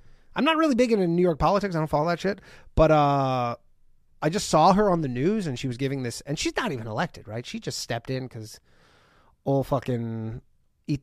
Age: 30-49